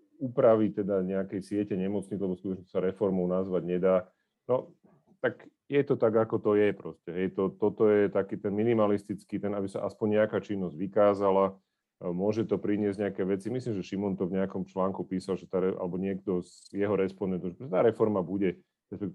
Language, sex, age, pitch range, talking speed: Slovak, male, 40-59, 95-105 Hz, 180 wpm